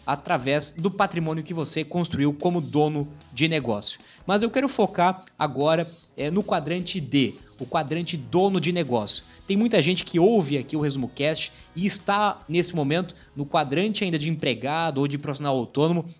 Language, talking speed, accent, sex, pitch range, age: Portuguese, 165 wpm, Brazilian, male, 145-185 Hz, 20-39